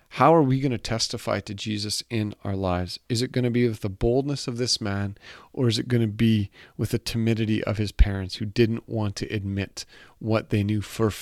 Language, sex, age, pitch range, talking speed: English, male, 40-59, 100-120 Hz, 230 wpm